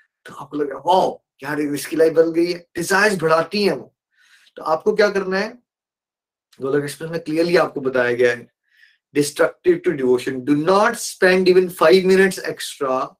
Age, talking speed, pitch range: 20-39, 90 wpm, 150-195 Hz